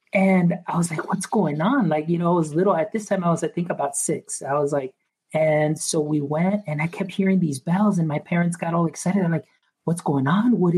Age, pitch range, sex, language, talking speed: 30-49, 155-190 Hz, male, English, 260 wpm